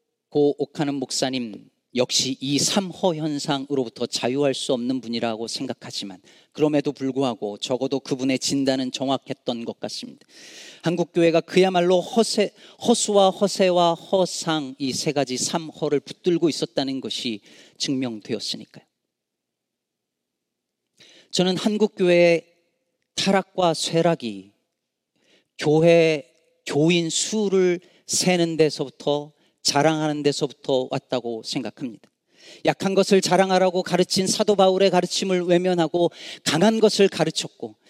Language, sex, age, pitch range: Korean, male, 40-59, 145-215 Hz